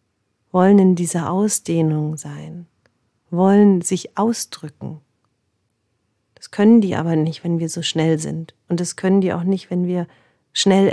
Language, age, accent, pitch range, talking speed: German, 40-59, German, 160-190 Hz, 150 wpm